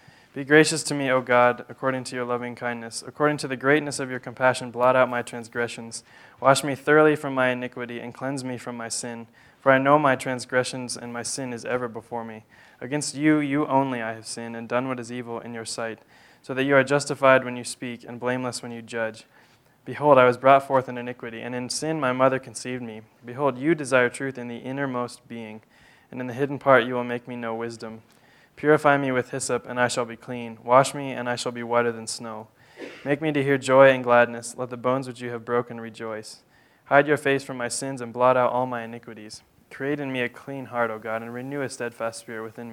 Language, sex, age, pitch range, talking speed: English, male, 20-39, 120-135 Hz, 235 wpm